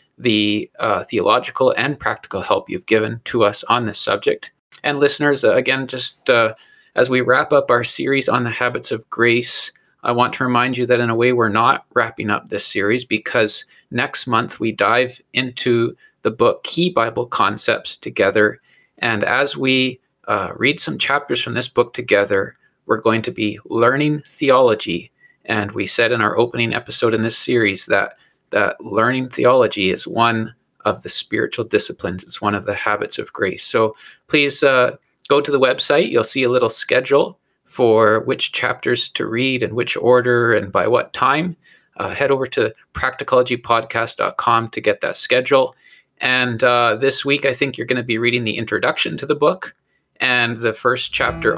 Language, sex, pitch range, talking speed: English, male, 115-140 Hz, 180 wpm